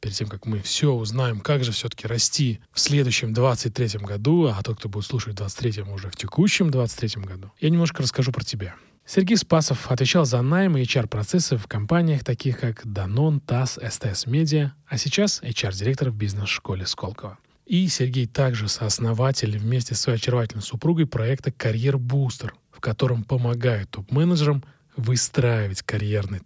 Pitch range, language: 115-150 Hz, Russian